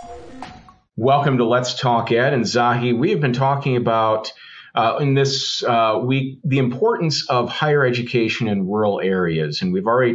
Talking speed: 165 wpm